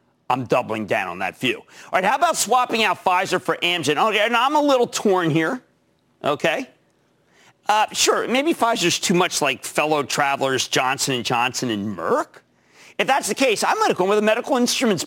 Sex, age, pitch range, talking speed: male, 50-69, 145-230 Hz, 195 wpm